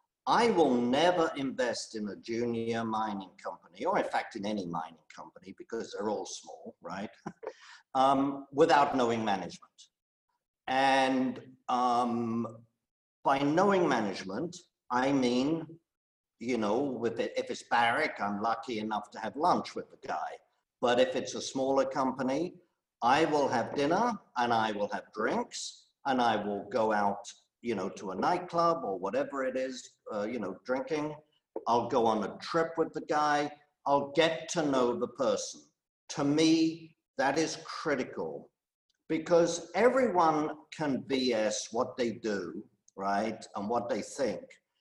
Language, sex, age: English, male, 50-69